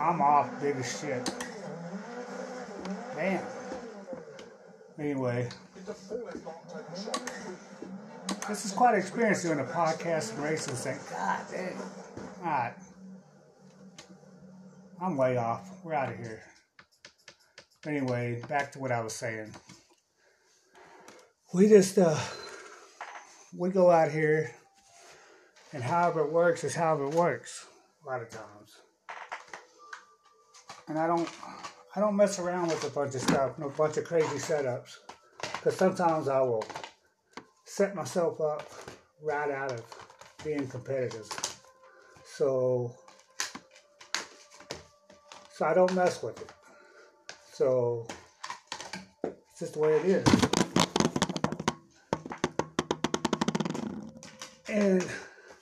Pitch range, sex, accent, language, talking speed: 145-205 Hz, male, American, English, 110 wpm